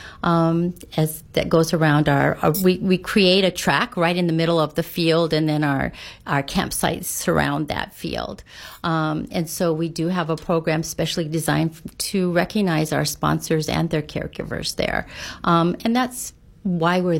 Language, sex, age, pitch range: English, female, 50-69, 155-180 Hz